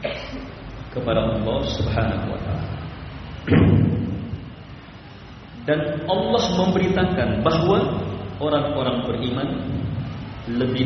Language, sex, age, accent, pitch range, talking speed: Indonesian, male, 40-59, native, 110-145 Hz, 65 wpm